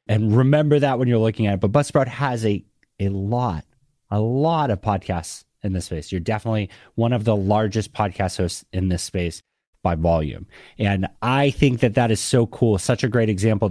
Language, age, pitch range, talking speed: English, 30-49, 100-125 Hz, 200 wpm